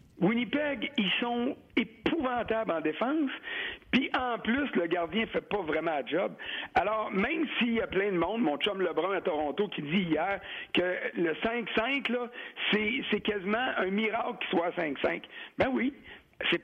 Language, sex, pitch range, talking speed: French, male, 175-250 Hz, 175 wpm